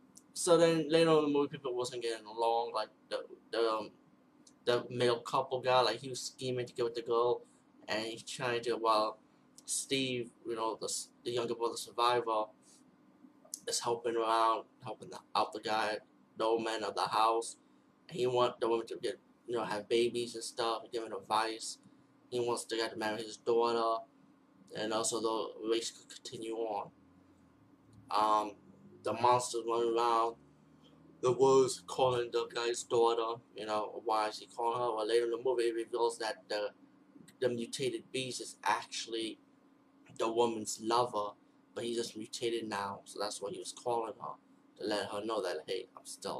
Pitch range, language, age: 115-130 Hz, English, 20-39